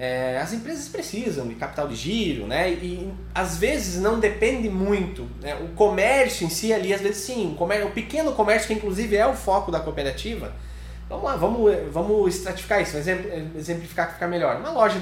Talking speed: 200 wpm